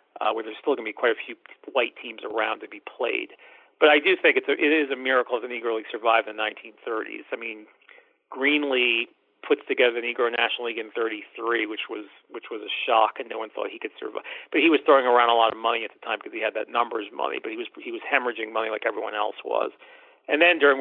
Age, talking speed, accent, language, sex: 40-59, 255 wpm, American, English, male